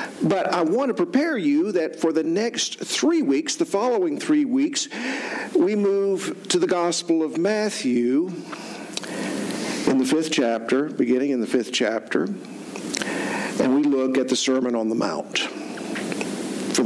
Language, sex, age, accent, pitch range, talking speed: English, male, 50-69, American, 120-195 Hz, 150 wpm